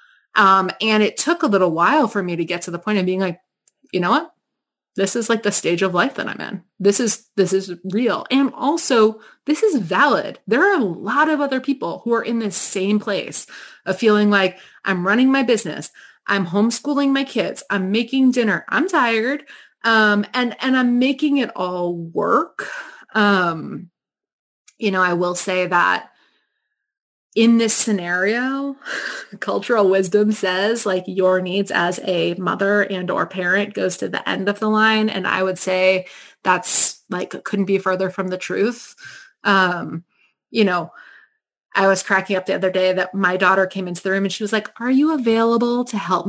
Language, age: English, 30-49